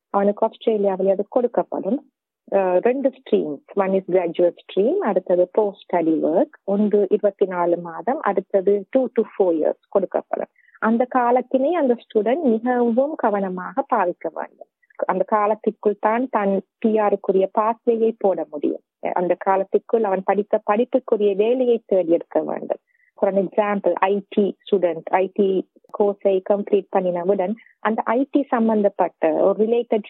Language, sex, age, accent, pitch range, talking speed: Tamil, female, 30-49, native, 190-230 Hz, 140 wpm